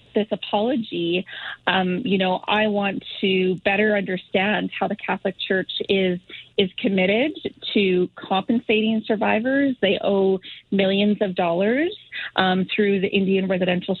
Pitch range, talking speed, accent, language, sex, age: 190-230 Hz, 130 wpm, American, English, female, 30-49